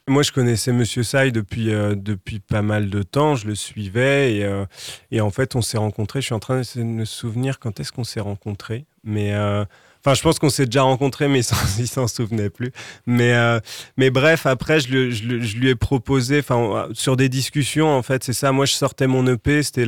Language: French